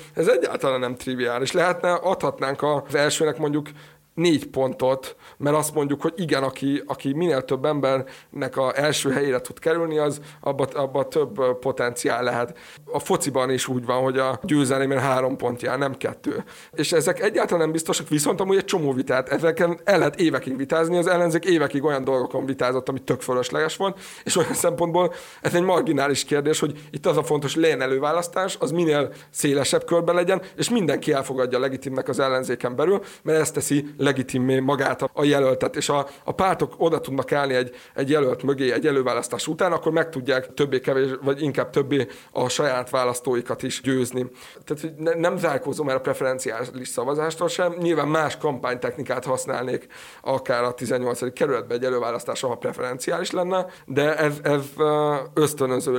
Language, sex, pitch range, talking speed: Hungarian, male, 130-160 Hz, 170 wpm